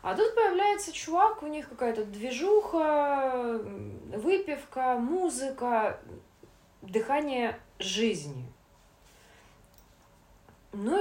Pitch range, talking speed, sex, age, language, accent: 175-255 Hz, 70 wpm, female, 20-39, Russian, native